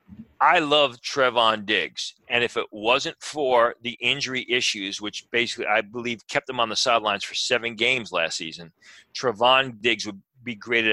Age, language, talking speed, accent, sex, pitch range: 40-59, English, 170 wpm, American, male, 115-140 Hz